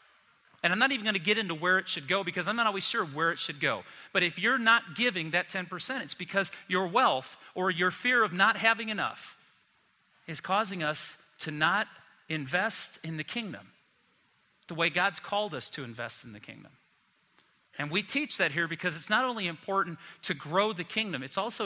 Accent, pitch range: American, 140-185 Hz